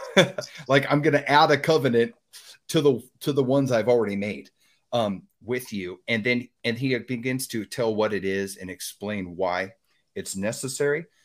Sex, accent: male, American